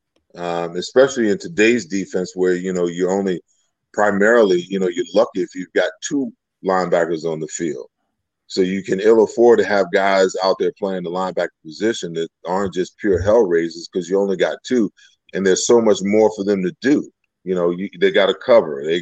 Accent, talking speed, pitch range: American, 205 wpm, 90-125 Hz